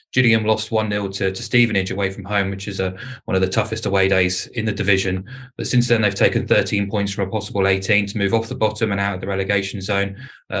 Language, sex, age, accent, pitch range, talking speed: English, male, 20-39, British, 100-115 Hz, 245 wpm